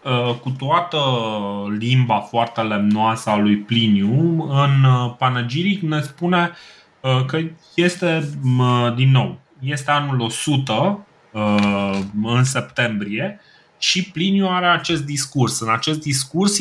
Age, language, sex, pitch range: 20-39, Romanian, male, 110-150 Hz